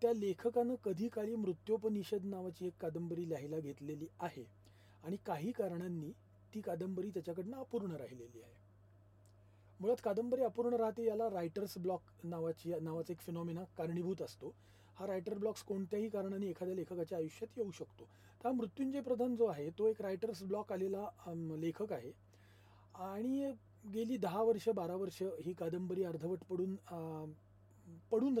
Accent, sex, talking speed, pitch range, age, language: native, male, 115 wpm, 150-225 Hz, 40-59, Marathi